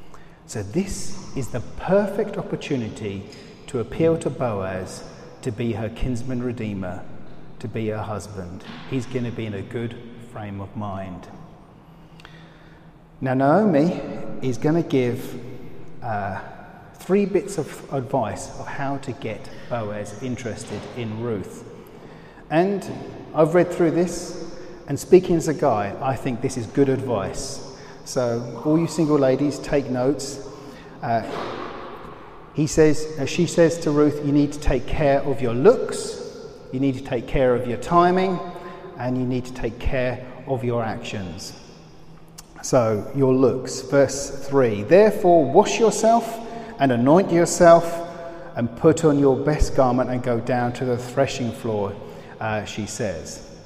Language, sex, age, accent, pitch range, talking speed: English, male, 40-59, British, 120-165 Hz, 145 wpm